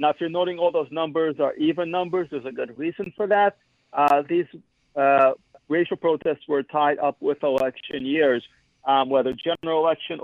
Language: English